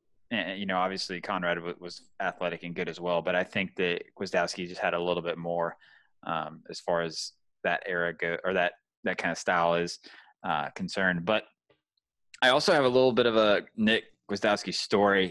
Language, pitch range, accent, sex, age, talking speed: English, 90-110 Hz, American, male, 20-39, 195 wpm